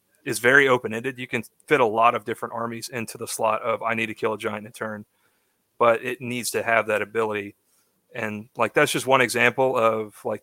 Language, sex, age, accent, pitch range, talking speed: English, male, 30-49, American, 110-125 Hz, 220 wpm